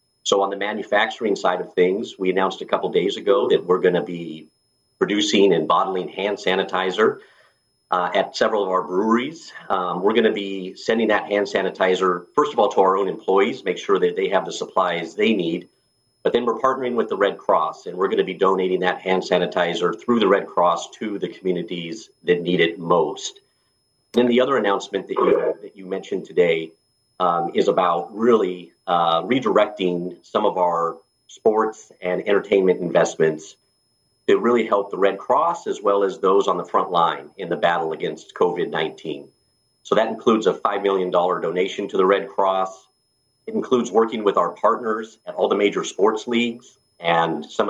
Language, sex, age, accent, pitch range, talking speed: English, male, 50-69, American, 90-125 Hz, 190 wpm